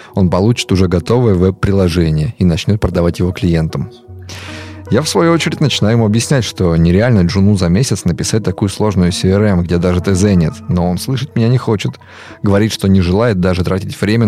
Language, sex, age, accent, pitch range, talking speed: Russian, male, 20-39, native, 90-115 Hz, 180 wpm